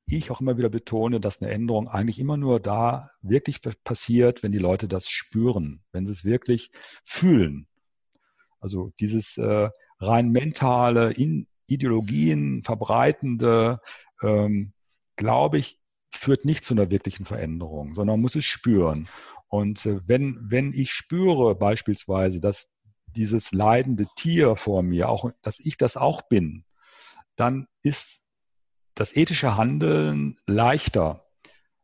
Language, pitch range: English, 100-125 Hz